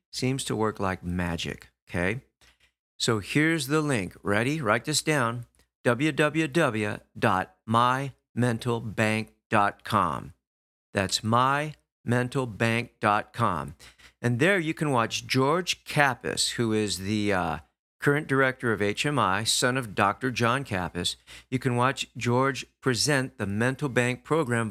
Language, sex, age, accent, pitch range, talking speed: English, male, 50-69, American, 100-135 Hz, 110 wpm